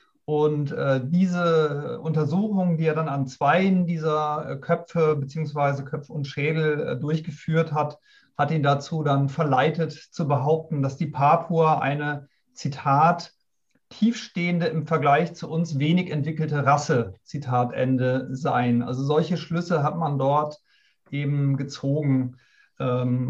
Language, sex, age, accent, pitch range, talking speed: German, male, 40-59, German, 140-160 Hz, 130 wpm